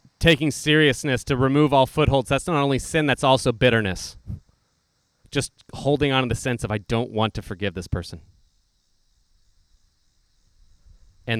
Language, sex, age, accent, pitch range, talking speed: English, male, 30-49, American, 100-130 Hz, 145 wpm